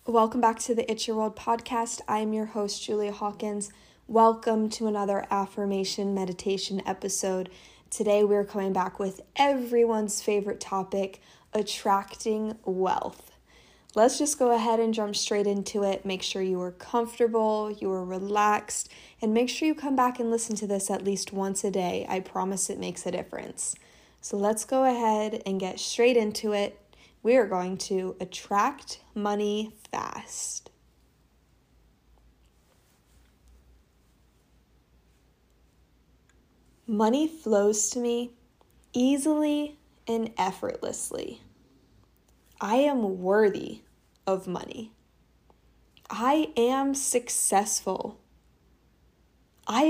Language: English